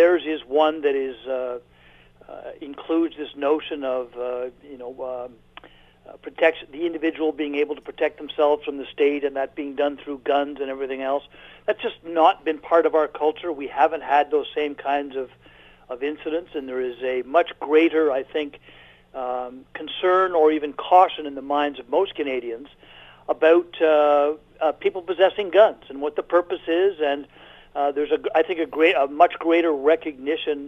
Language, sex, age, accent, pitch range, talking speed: English, male, 50-69, American, 140-165 Hz, 185 wpm